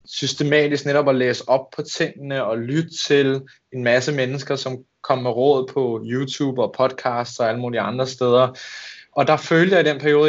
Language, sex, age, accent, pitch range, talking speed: Danish, male, 20-39, native, 125-150 Hz, 190 wpm